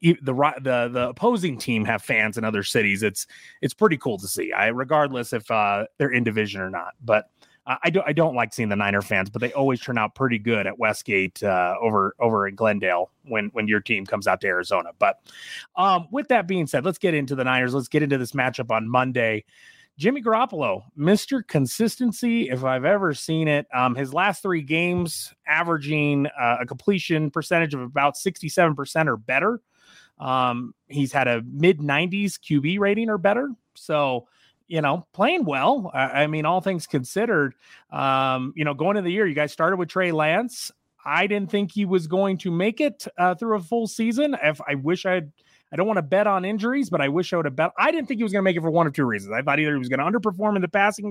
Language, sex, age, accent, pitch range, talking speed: English, male, 30-49, American, 130-190 Hz, 225 wpm